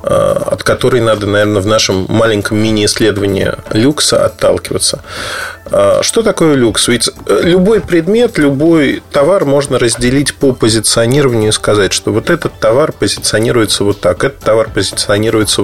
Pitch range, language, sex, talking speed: 105-145 Hz, Russian, male, 130 wpm